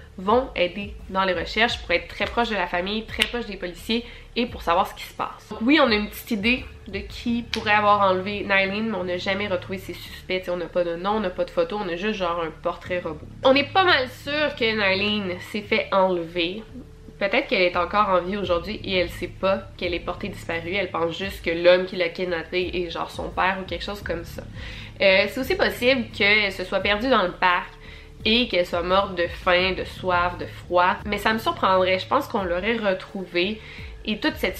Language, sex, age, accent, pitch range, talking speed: French, female, 20-39, Canadian, 180-210 Hz, 235 wpm